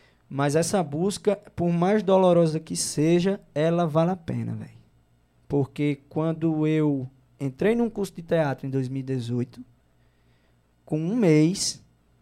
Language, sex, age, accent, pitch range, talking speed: Portuguese, male, 20-39, Brazilian, 135-190 Hz, 130 wpm